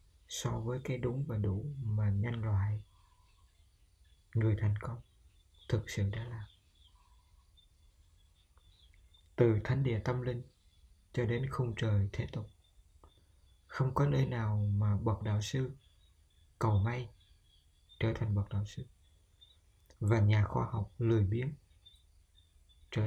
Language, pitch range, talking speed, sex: Vietnamese, 85-115 Hz, 125 wpm, male